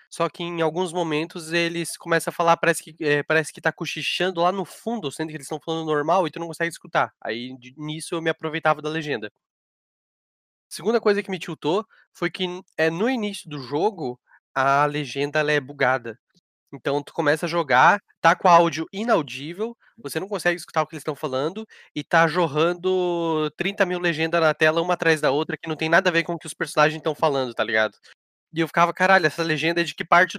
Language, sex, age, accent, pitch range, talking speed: Portuguese, male, 20-39, Brazilian, 145-170 Hz, 220 wpm